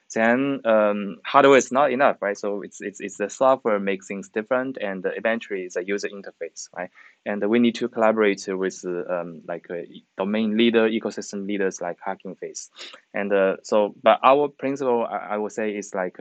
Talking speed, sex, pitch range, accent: 185 wpm, male, 95-115 Hz, Chinese